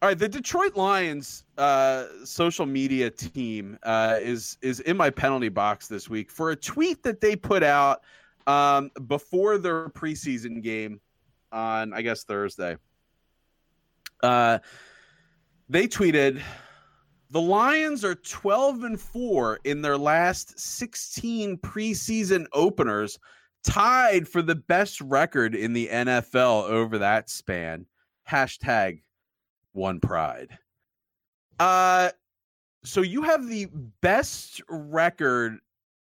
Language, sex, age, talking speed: English, male, 30-49, 115 wpm